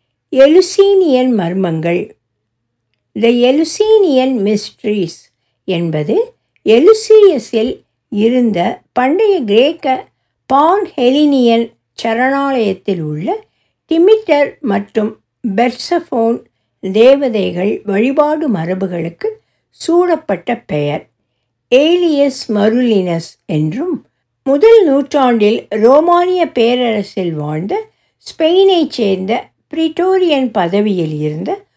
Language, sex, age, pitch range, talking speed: Tamil, female, 60-79, 195-300 Hz, 65 wpm